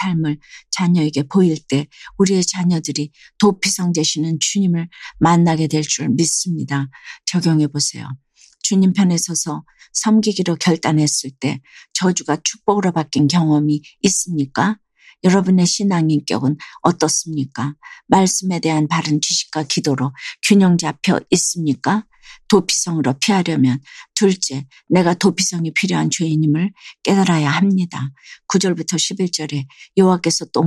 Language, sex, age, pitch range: Korean, female, 50-69, 145-185 Hz